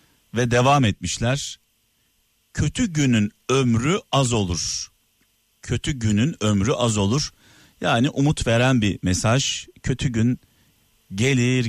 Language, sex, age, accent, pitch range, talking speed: Turkish, male, 50-69, native, 105-145 Hz, 110 wpm